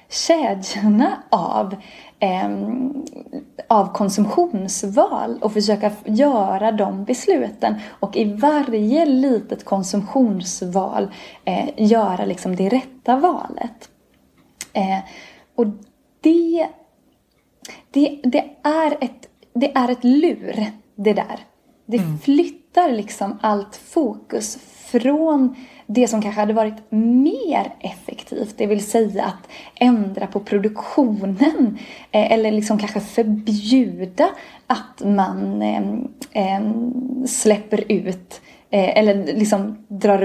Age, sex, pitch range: 20-39, female, 205-260 Hz